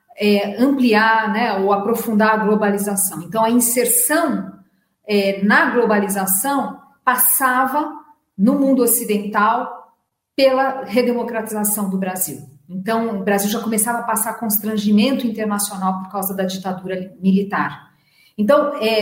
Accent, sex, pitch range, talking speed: Brazilian, female, 195-250 Hz, 105 wpm